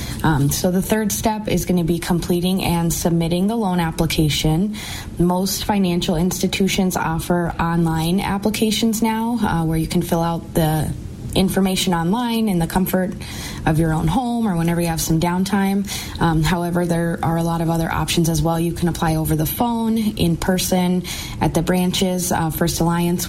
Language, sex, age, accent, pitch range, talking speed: English, female, 20-39, American, 165-190 Hz, 175 wpm